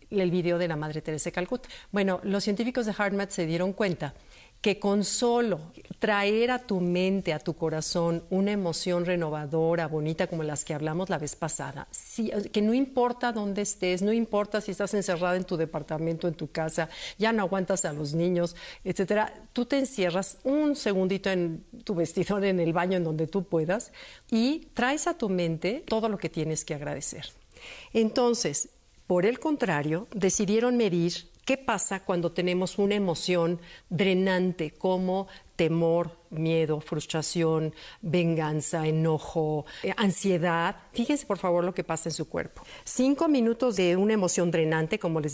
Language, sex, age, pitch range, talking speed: Spanish, female, 50-69, 170-220 Hz, 165 wpm